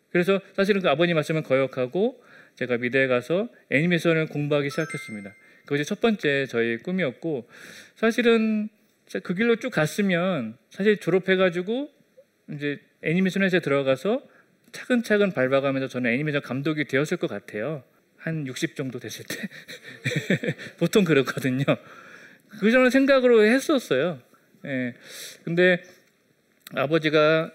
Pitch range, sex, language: 145-210 Hz, male, Korean